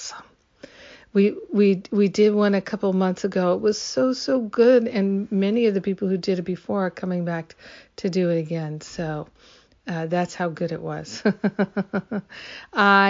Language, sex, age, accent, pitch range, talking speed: English, female, 50-69, American, 170-200 Hz, 170 wpm